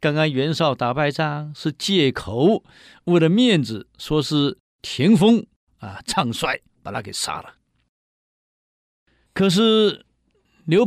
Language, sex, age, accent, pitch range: Chinese, male, 50-69, native, 120-190 Hz